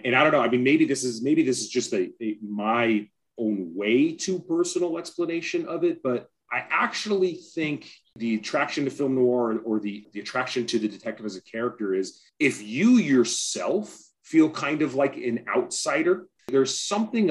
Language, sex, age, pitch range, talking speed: English, male, 30-49, 110-165 Hz, 190 wpm